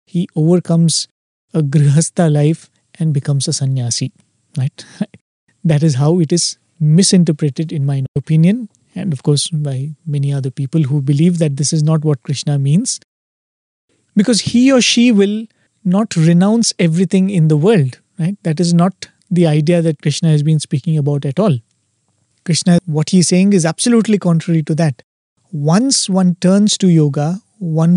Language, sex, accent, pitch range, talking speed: English, male, Indian, 150-180 Hz, 160 wpm